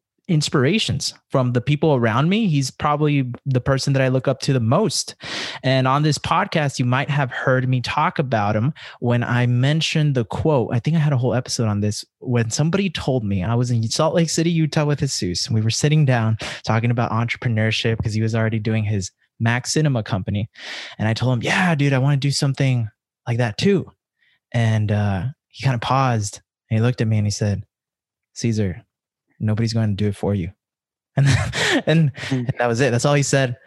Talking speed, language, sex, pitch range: 210 wpm, English, male, 110-140 Hz